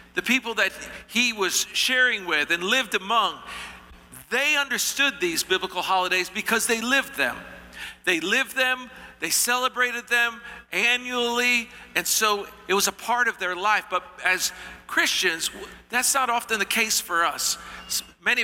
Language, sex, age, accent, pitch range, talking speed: English, male, 50-69, American, 180-235 Hz, 150 wpm